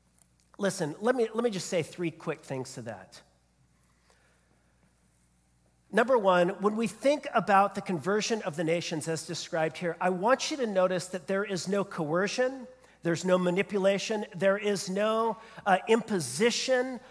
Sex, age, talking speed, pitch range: male, 40-59, 155 wpm, 160-225 Hz